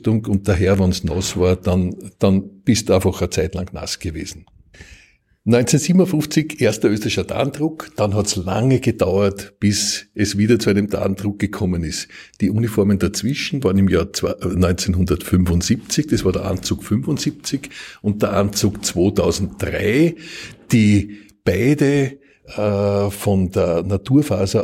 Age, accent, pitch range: 50-69, Austrian, 95-105 Hz